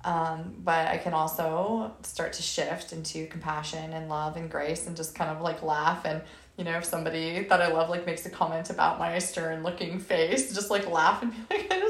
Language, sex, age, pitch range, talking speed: English, female, 20-39, 165-215 Hz, 220 wpm